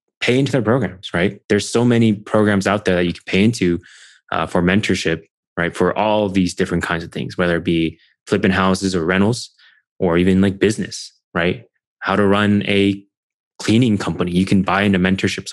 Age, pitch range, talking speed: 20-39, 90-110 Hz, 195 wpm